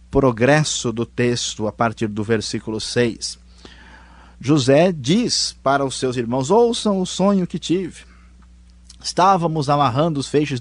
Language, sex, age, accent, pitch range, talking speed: Portuguese, male, 20-39, Brazilian, 120-155 Hz, 130 wpm